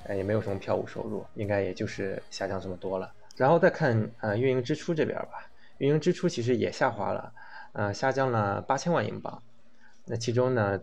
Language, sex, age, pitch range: Chinese, male, 20-39, 100-120 Hz